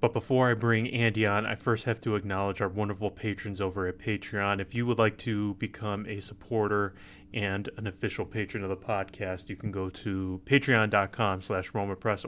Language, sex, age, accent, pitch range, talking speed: English, male, 20-39, American, 95-115 Hz, 190 wpm